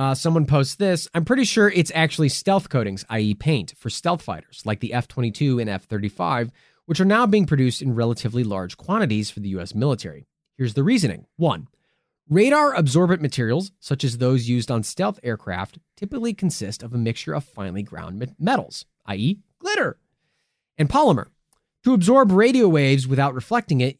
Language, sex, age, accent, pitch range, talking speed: English, male, 30-49, American, 120-175 Hz, 170 wpm